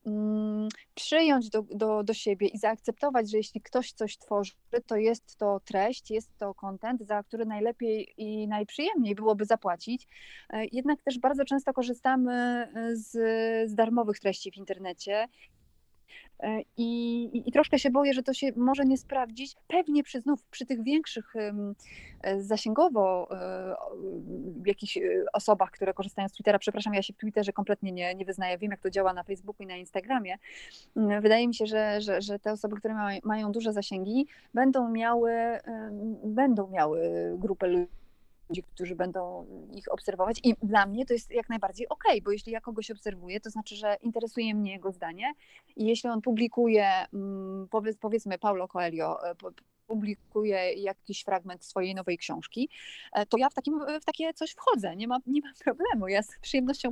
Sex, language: female, Polish